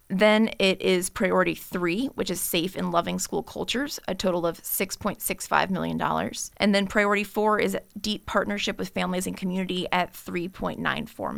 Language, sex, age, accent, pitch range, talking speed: English, female, 20-39, American, 175-210 Hz, 160 wpm